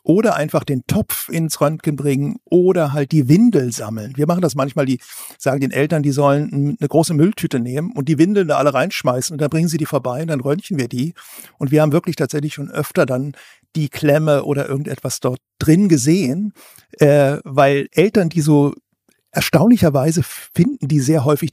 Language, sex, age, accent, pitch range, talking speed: German, male, 60-79, German, 135-160 Hz, 190 wpm